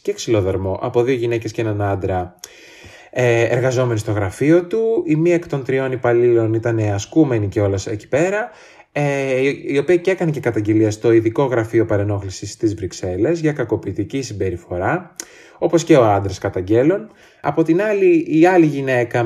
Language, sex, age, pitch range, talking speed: Greek, male, 20-39, 105-160 Hz, 160 wpm